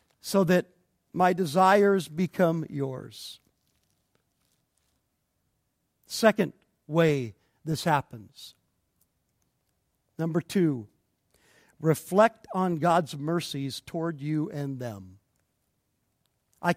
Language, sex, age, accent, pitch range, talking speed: English, male, 50-69, American, 145-195 Hz, 75 wpm